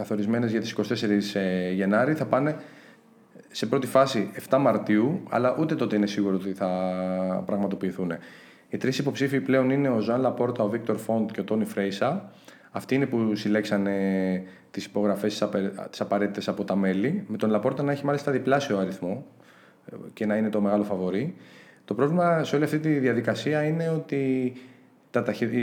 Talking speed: 165 wpm